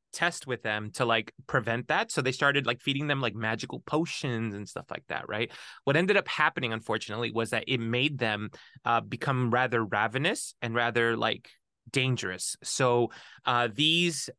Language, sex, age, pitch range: English, male, 20-39, 115-140 Hz